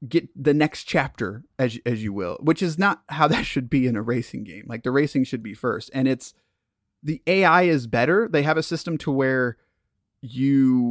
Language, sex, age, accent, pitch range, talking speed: English, male, 30-49, American, 120-155 Hz, 210 wpm